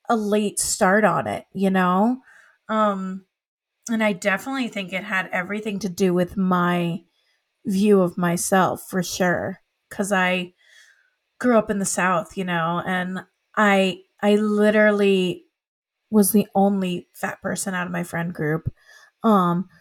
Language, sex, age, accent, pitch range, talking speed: English, female, 30-49, American, 185-230 Hz, 145 wpm